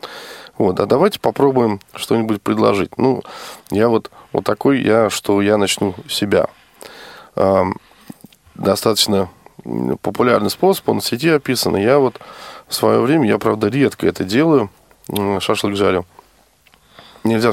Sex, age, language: male, 20-39, Russian